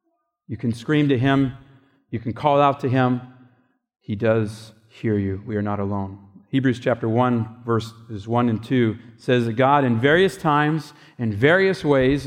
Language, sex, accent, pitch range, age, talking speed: English, male, American, 115-150 Hz, 40-59, 170 wpm